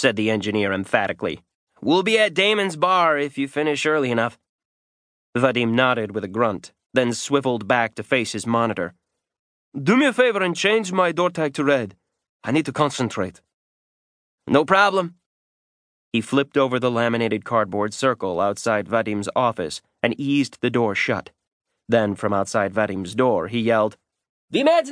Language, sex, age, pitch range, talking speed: English, male, 30-49, 105-145 Hz, 160 wpm